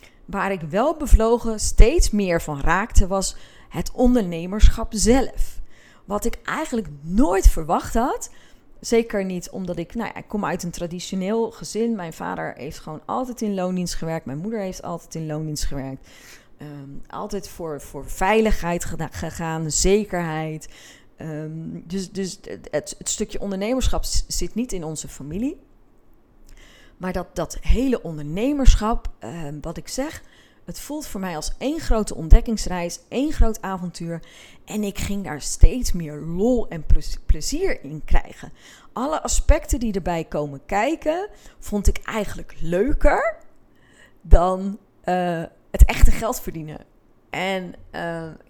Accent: Dutch